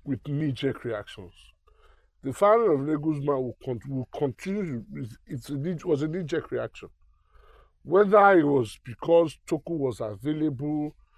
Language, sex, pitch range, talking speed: English, male, 115-165 Hz, 125 wpm